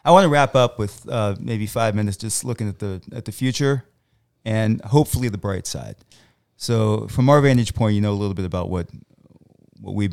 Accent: American